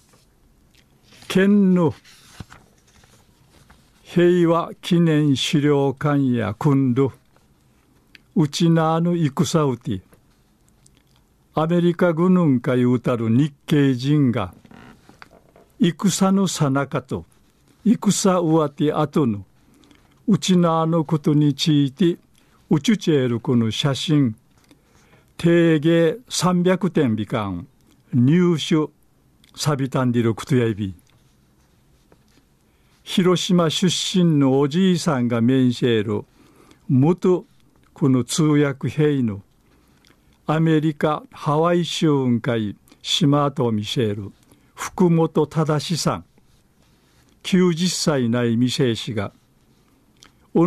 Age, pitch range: 50-69, 120-170 Hz